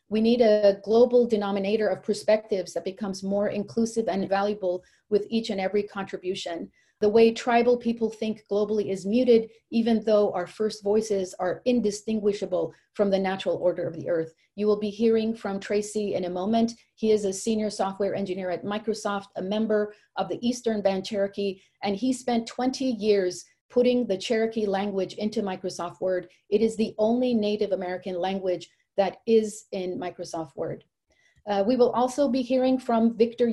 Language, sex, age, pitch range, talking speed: English, female, 40-59, 190-225 Hz, 170 wpm